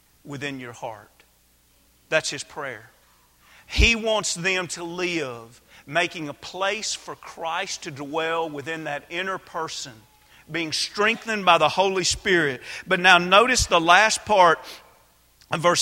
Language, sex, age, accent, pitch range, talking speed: English, male, 40-59, American, 140-205 Hz, 135 wpm